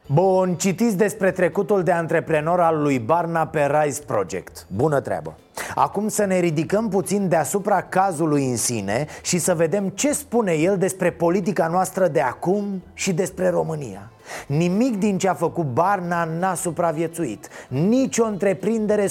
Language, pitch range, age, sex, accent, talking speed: Romanian, 155-195 Hz, 30-49, male, native, 150 wpm